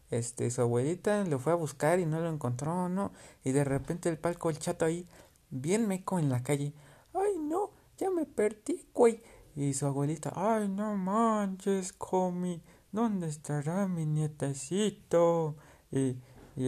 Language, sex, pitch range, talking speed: Spanish, male, 135-185 Hz, 160 wpm